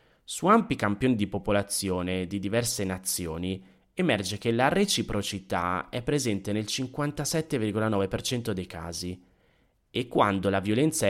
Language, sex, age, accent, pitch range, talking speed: Italian, male, 20-39, native, 95-125 Hz, 120 wpm